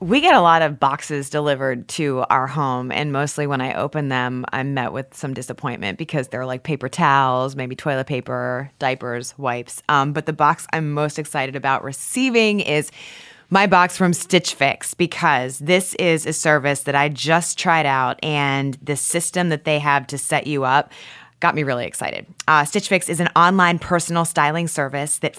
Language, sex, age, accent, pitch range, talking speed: English, female, 20-39, American, 140-175 Hz, 190 wpm